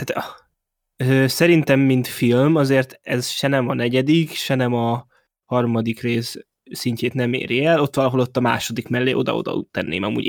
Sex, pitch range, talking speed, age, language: male, 120-140 Hz, 155 wpm, 20-39, Hungarian